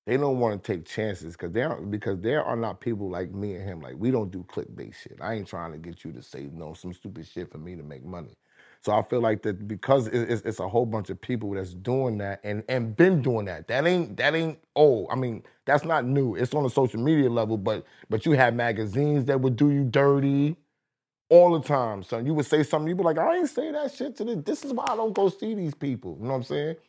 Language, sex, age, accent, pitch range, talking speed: English, male, 30-49, American, 105-135 Hz, 270 wpm